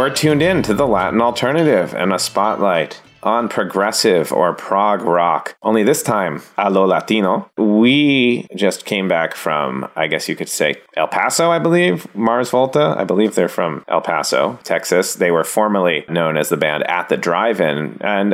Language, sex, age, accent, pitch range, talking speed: English, male, 30-49, American, 85-115 Hz, 180 wpm